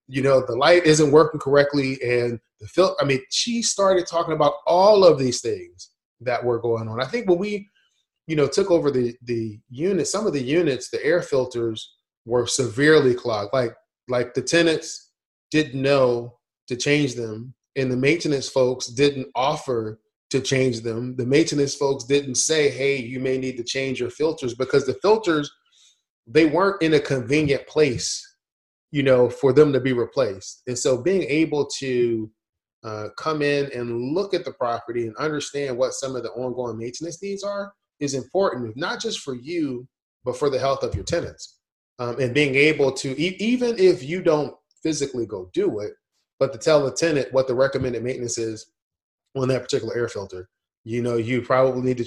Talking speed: 190 wpm